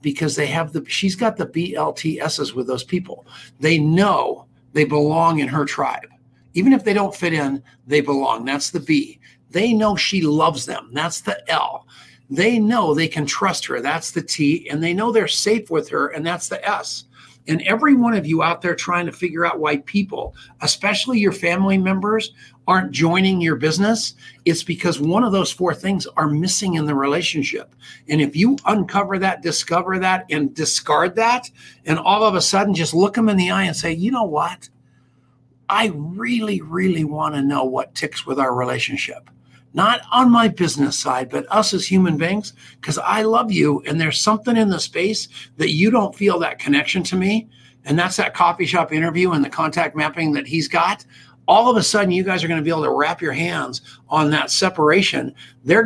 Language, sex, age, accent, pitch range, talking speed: English, male, 50-69, American, 150-195 Hz, 200 wpm